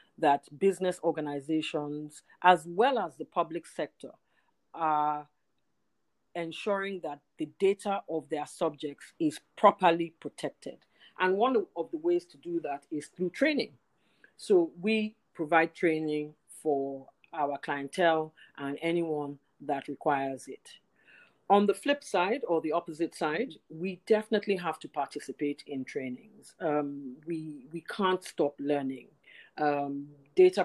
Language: English